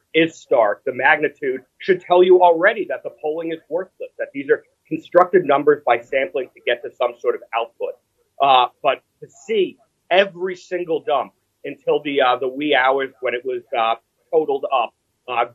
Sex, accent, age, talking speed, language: male, American, 30-49, 180 wpm, English